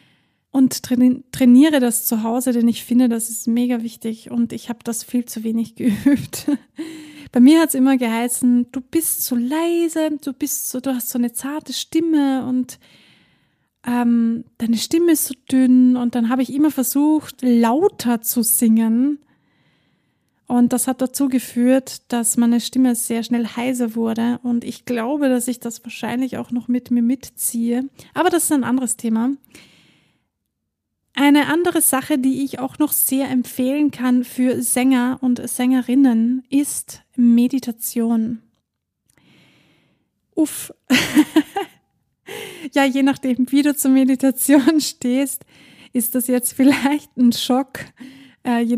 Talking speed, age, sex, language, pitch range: 140 wpm, 20-39, female, German, 240-275 Hz